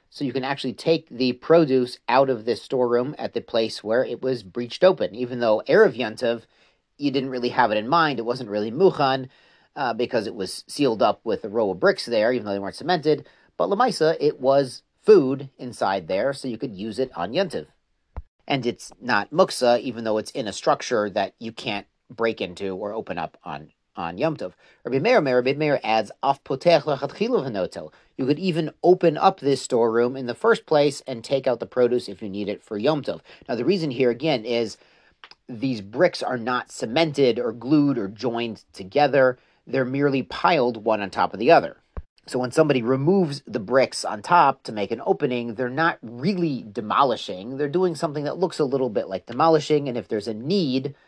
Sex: male